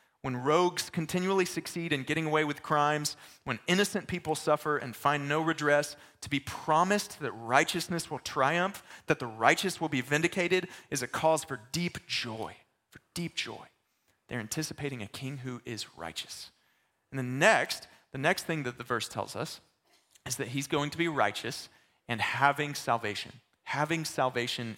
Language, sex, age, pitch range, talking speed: English, male, 30-49, 125-165 Hz, 165 wpm